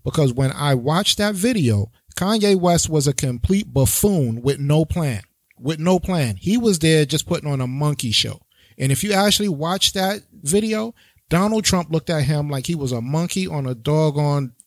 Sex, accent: male, American